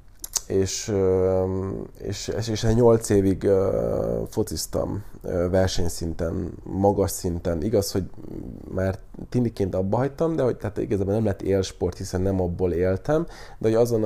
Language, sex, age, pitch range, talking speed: Hungarian, male, 20-39, 95-110 Hz, 125 wpm